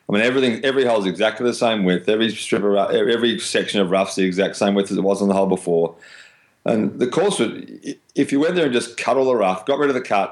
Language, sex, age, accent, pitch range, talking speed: English, male, 30-49, Australian, 95-115 Hz, 285 wpm